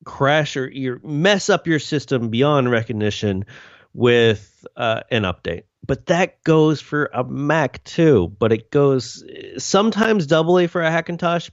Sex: male